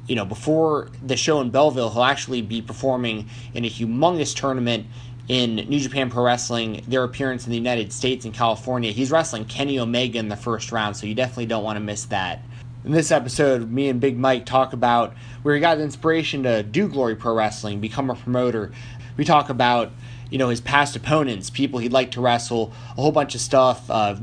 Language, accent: English, American